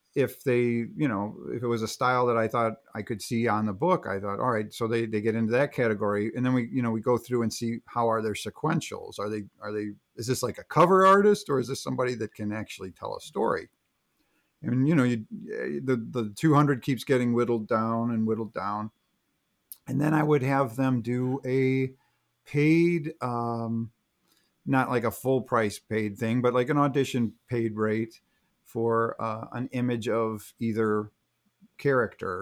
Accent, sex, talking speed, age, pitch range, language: American, male, 200 wpm, 40-59, 110-130 Hz, English